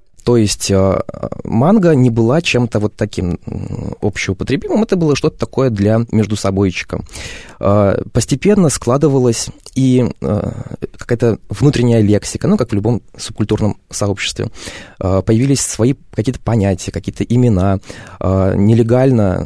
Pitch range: 100-125 Hz